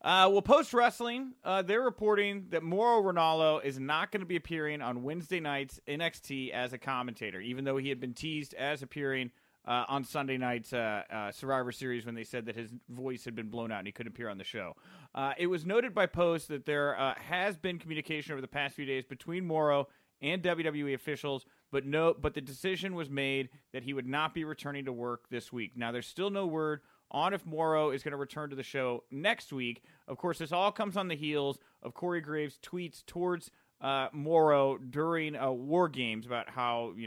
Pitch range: 130-175 Hz